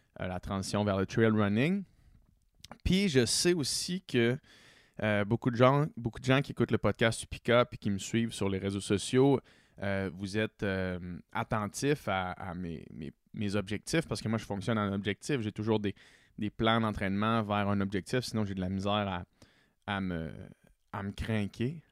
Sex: male